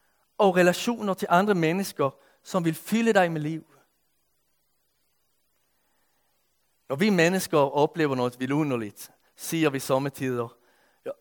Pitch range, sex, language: 140-185 Hz, male, Danish